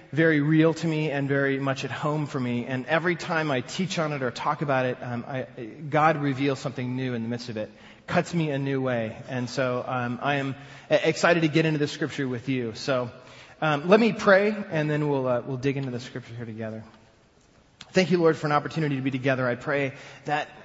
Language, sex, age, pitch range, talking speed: English, male, 30-49, 115-145 Hz, 230 wpm